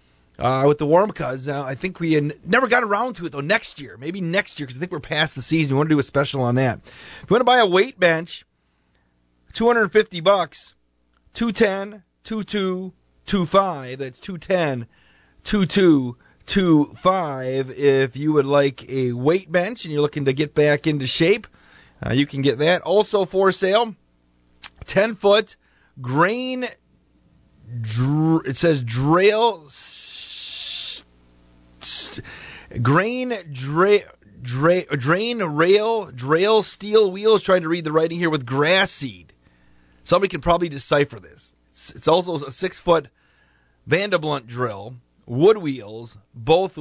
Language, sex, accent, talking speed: English, male, American, 140 wpm